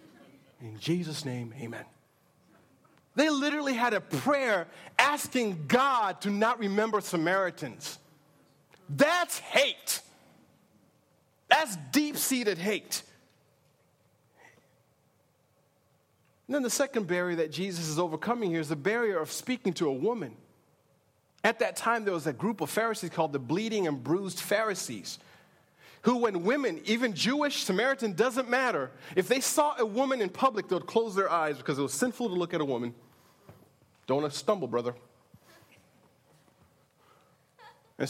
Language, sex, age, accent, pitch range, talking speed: English, male, 40-59, American, 145-230 Hz, 135 wpm